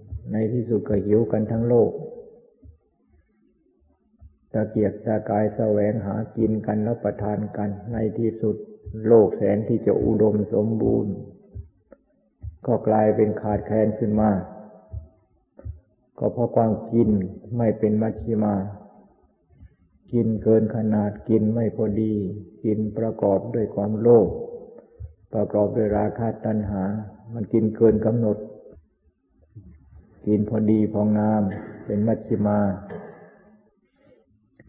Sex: male